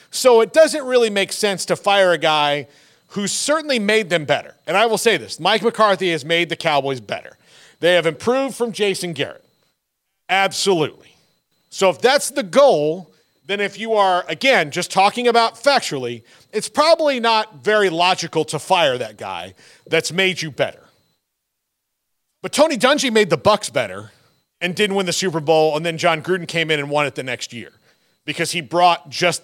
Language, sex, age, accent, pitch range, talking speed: English, male, 40-59, American, 155-210 Hz, 185 wpm